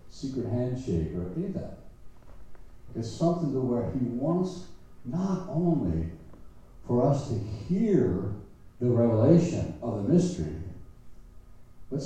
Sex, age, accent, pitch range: male, 60-79, American, 95-130 Hz